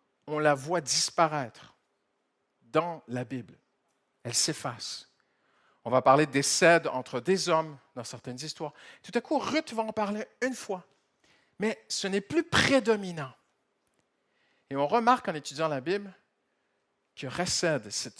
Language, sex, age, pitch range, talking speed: French, male, 50-69, 145-220 Hz, 140 wpm